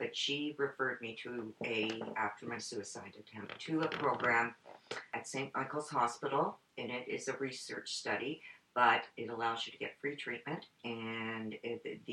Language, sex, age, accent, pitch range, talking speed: English, female, 50-69, American, 115-135 Hz, 160 wpm